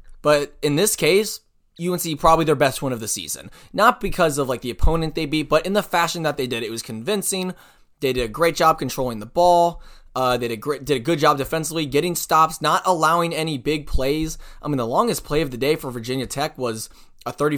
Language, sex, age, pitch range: English, male, 20-39, 130-170 Hz